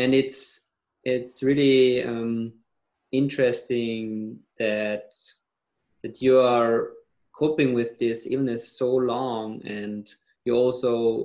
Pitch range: 110-130 Hz